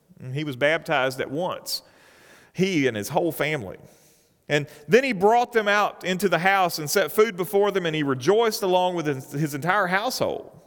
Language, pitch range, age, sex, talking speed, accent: English, 125-210 Hz, 40-59, male, 185 wpm, American